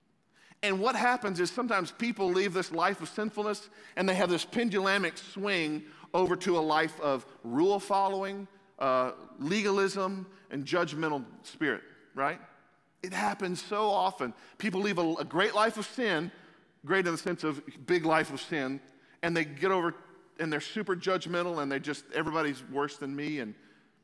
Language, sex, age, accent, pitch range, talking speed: English, male, 40-59, American, 140-190 Hz, 165 wpm